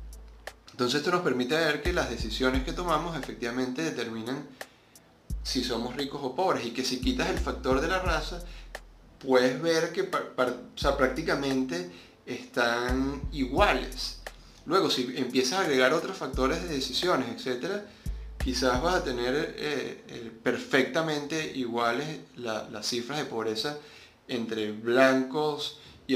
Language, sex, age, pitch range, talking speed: Spanish, male, 30-49, 110-135 Hz, 125 wpm